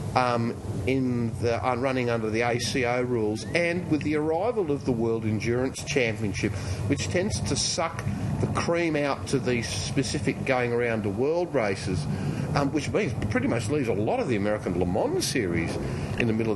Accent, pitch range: Australian, 110-135 Hz